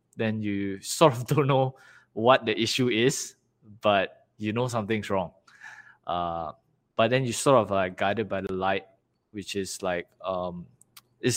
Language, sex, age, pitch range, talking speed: English, male, 20-39, 105-135 Hz, 165 wpm